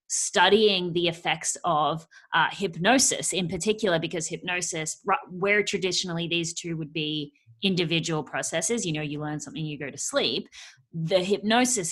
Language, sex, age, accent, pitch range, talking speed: English, female, 20-39, Australian, 155-195 Hz, 145 wpm